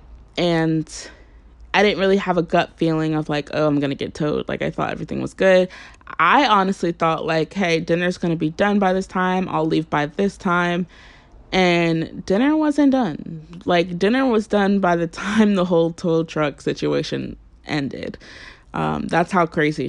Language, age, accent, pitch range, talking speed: English, 20-39, American, 150-200 Hz, 185 wpm